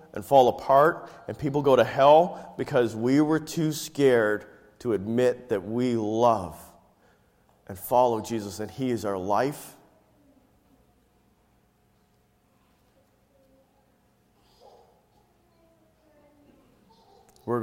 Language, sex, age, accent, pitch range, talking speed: English, male, 40-59, American, 110-150 Hz, 90 wpm